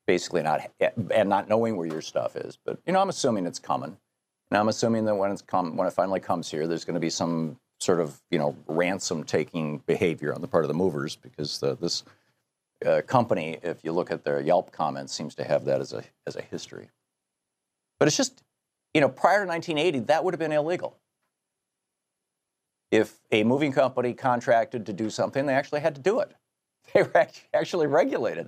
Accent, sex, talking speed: American, male, 205 wpm